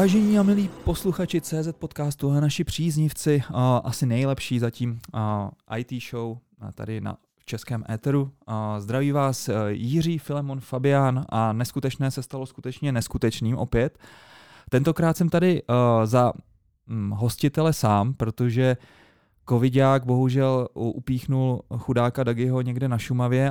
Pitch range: 115-140 Hz